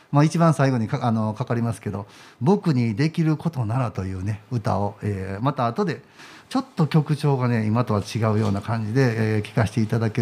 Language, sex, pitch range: Japanese, male, 115-170 Hz